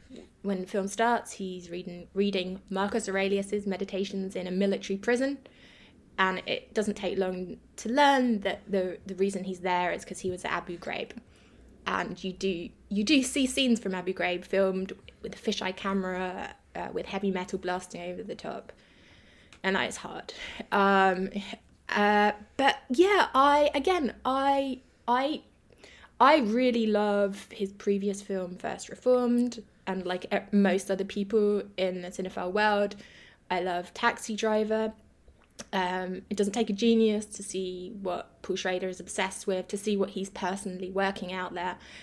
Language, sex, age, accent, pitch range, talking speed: English, female, 20-39, British, 190-225 Hz, 160 wpm